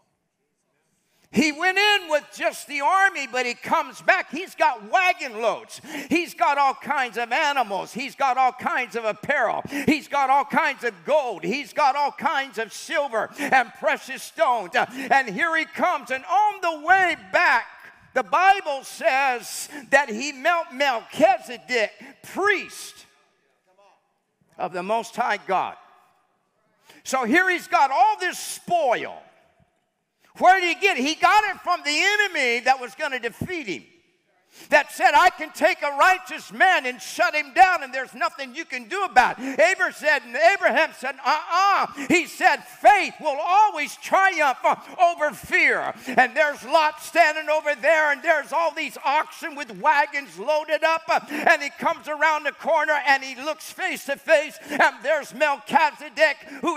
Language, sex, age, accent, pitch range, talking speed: English, male, 50-69, American, 275-330 Hz, 160 wpm